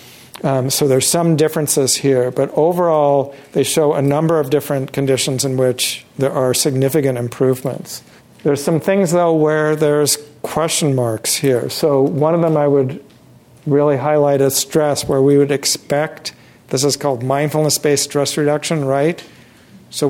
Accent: American